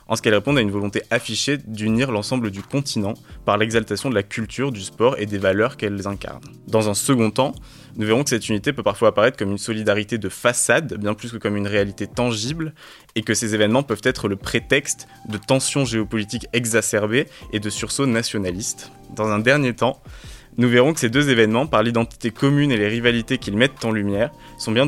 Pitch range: 105-130 Hz